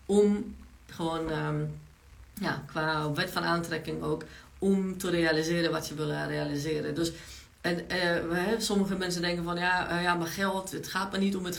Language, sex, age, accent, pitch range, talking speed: Dutch, female, 40-59, Dutch, 160-190 Hz, 155 wpm